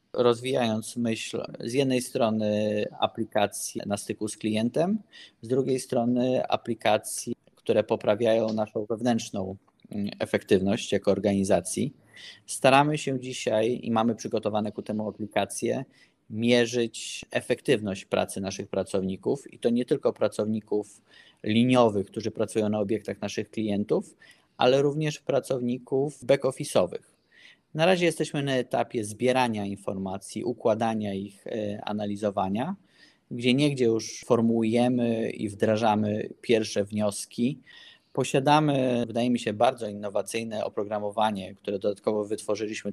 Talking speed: 110 wpm